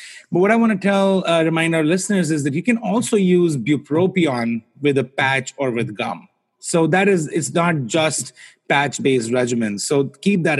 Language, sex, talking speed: English, male, 190 wpm